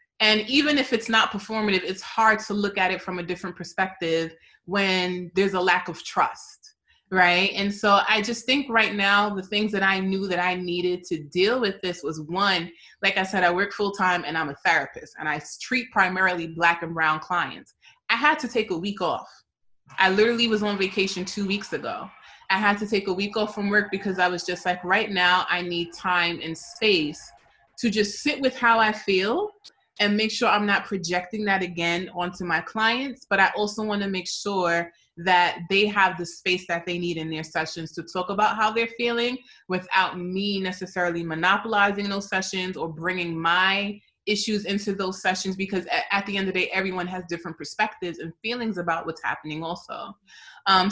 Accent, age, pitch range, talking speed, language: American, 20-39, 180-220 Hz, 200 wpm, English